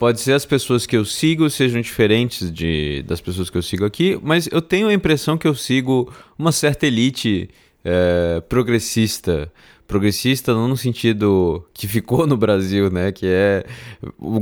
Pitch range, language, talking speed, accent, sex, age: 90-130 Hz, Portuguese, 165 wpm, Brazilian, male, 20-39